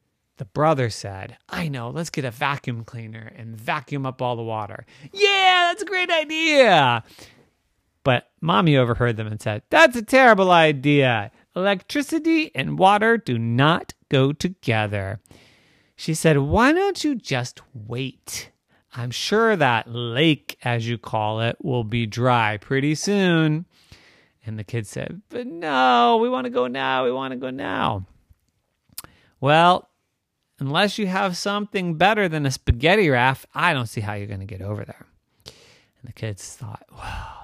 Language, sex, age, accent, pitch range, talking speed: English, male, 30-49, American, 115-160 Hz, 160 wpm